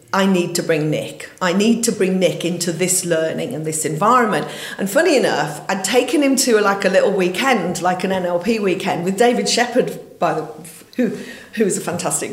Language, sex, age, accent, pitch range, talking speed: English, female, 40-59, British, 165-220 Hz, 195 wpm